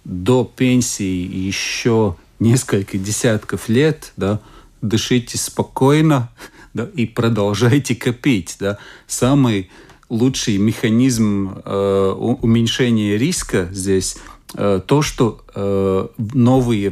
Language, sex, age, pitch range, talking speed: Russian, male, 40-59, 100-130 Hz, 95 wpm